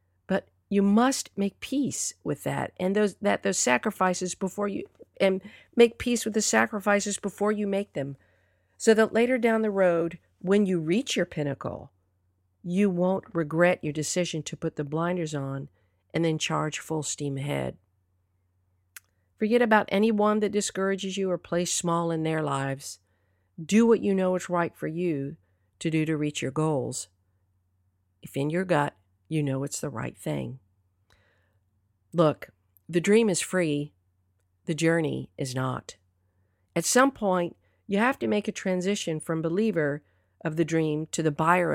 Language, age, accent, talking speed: English, 50-69, American, 160 wpm